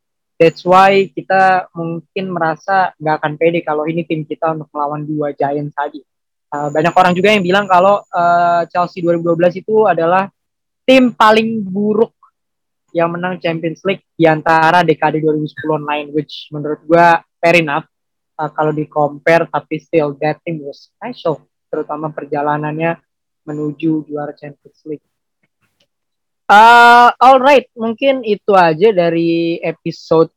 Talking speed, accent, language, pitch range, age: 135 wpm, Indonesian, English, 150-175 Hz, 20-39